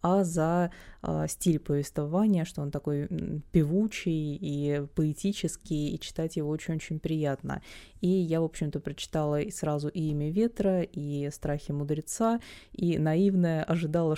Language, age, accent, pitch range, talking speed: Russian, 20-39, native, 150-175 Hz, 130 wpm